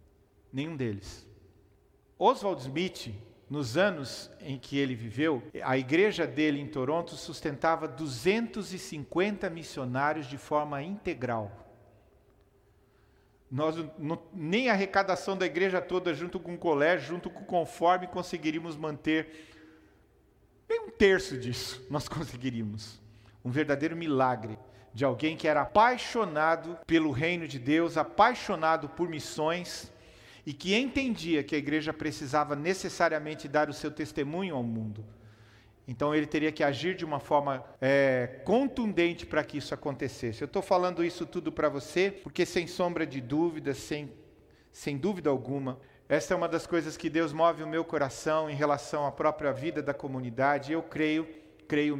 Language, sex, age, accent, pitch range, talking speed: Portuguese, male, 50-69, Brazilian, 135-170 Hz, 145 wpm